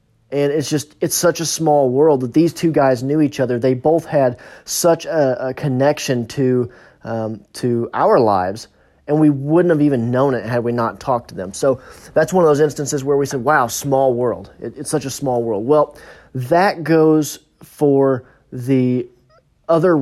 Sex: male